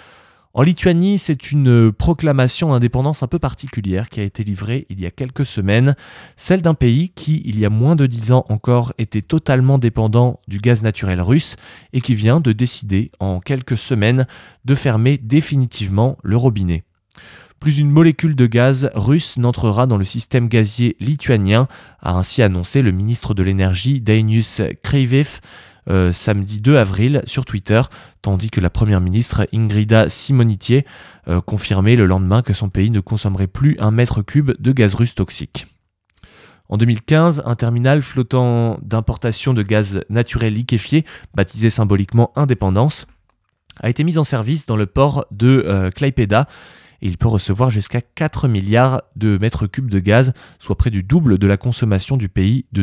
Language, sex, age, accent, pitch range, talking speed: French, male, 20-39, French, 105-130 Hz, 165 wpm